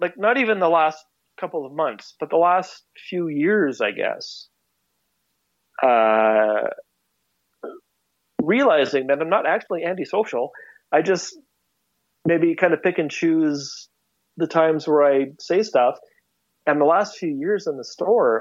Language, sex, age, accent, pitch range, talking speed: English, male, 40-59, American, 155-225 Hz, 145 wpm